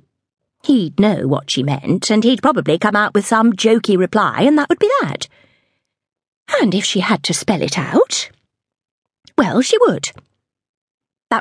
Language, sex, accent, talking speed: English, female, British, 165 wpm